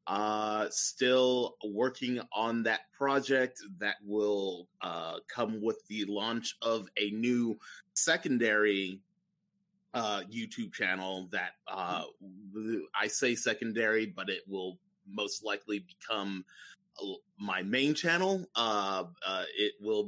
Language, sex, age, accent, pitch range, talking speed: English, male, 30-49, American, 100-130 Hz, 115 wpm